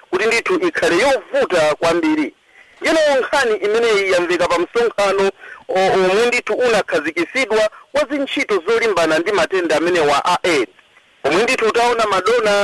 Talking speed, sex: 125 wpm, male